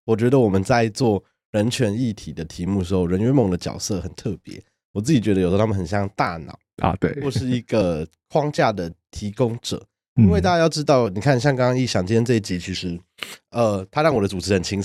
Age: 20-39